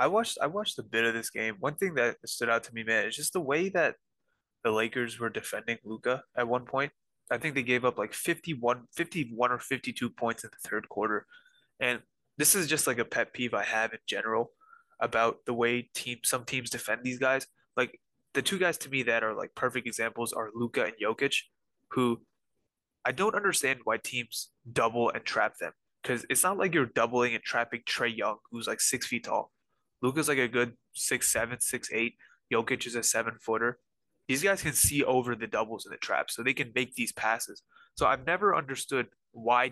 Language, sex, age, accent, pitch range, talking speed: English, male, 20-39, American, 115-145 Hz, 210 wpm